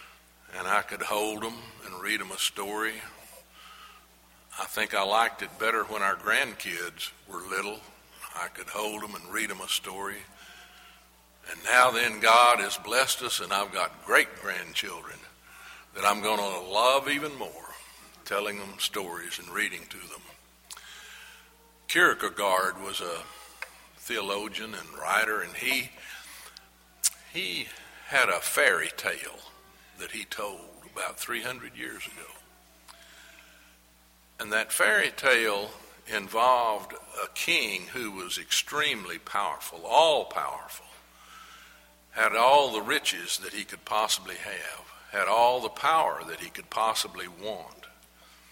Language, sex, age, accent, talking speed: English, male, 60-79, American, 130 wpm